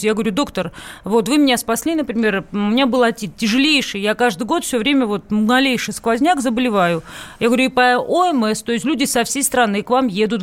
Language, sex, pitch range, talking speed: Russian, female, 220-275 Hz, 205 wpm